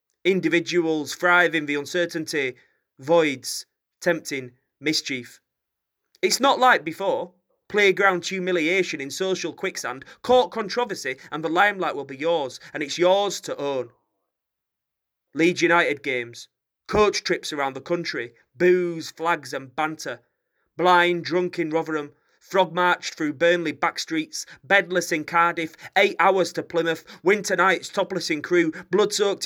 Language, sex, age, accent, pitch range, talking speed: English, male, 30-49, British, 150-180 Hz, 130 wpm